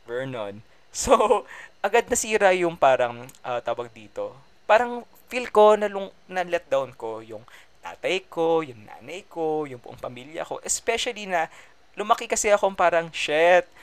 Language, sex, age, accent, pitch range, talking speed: English, male, 20-39, Filipino, 130-215 Hz, 150 wpm